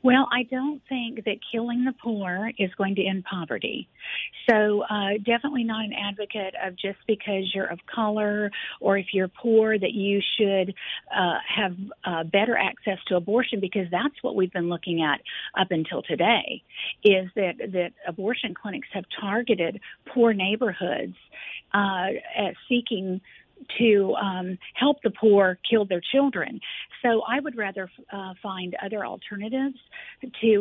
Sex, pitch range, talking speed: female, 190-225 Hz, 155 wpm